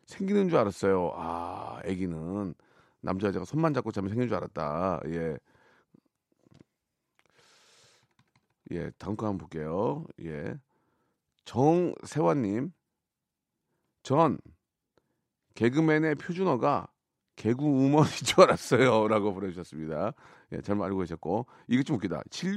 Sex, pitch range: male, 95-150 Hz